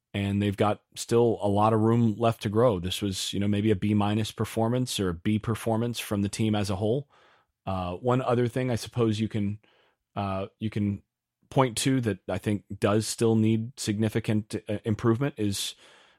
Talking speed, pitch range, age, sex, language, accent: 195 wpm, 105-125 Hz, 30-49, male, English, American